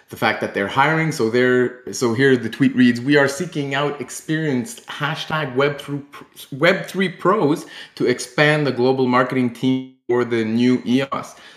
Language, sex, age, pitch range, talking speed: English, male, 20-39, 115-145 Hz, 170 wpm